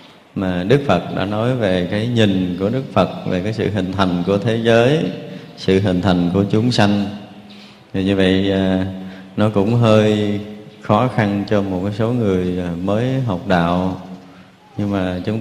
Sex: male